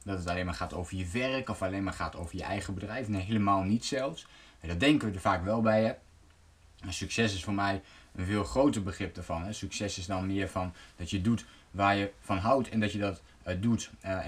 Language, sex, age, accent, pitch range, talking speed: Dutch, male, 20-39, Dutch, 95-120 Hz, 245 wpm